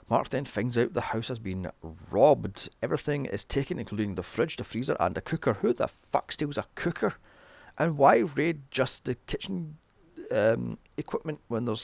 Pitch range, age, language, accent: 95-140 Hz, 30-49, English, British